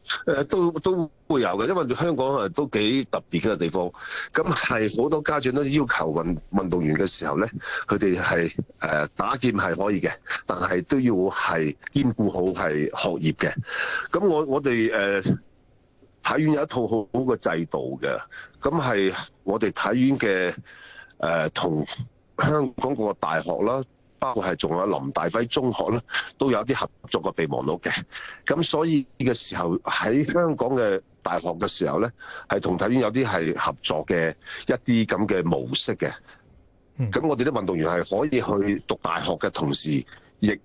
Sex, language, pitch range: male, Chinese, 95-140 Hz